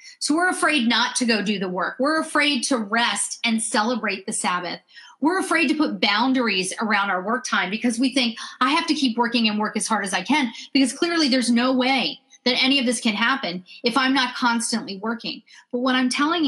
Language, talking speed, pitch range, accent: English, 220 wpm, 215-275 Hz, American